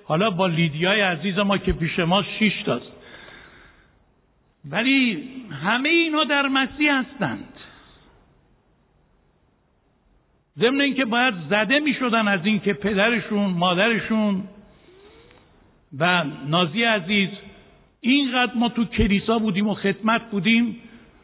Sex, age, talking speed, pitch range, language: male, 60-79, 100 wpm, 190-255 Hz, Persian